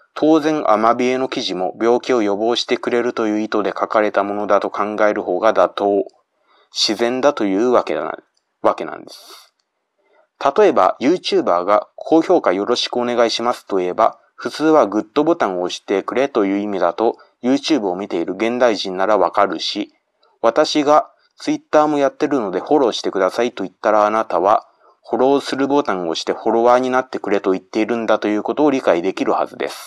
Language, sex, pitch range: Japanese, male, 105-150 Hz